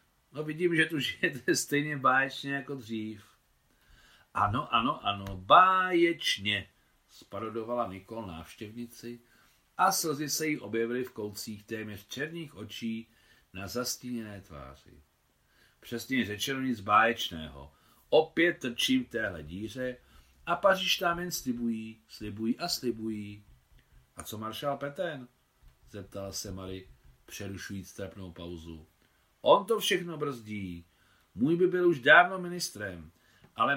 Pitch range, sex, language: 100-145 Hz, male, Czech